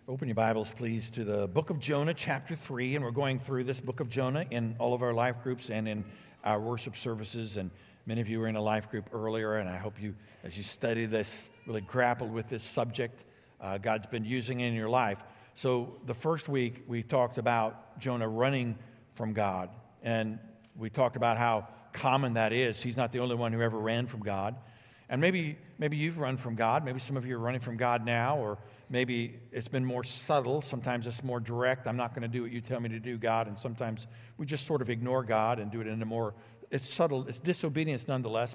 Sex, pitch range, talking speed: male, 115-135 Hz, 225 wpm